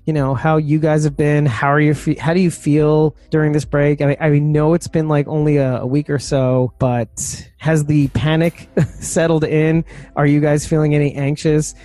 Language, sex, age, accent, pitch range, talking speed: English, male, 30-49, American, 125-155 Hz, 220 wpm